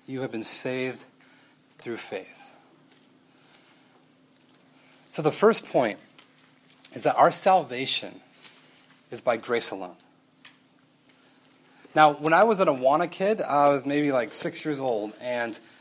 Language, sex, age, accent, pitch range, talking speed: English, male, 30-49, American, 135-195 Hz, 125 wpm